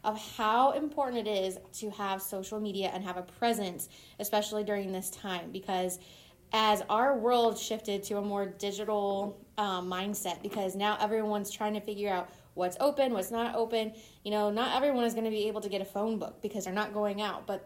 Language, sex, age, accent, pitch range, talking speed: English, female, 20-39, American, 200-230 Hz, 205 wpm